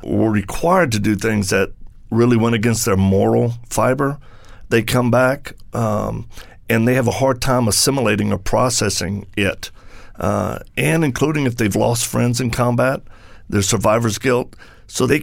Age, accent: 50-69, American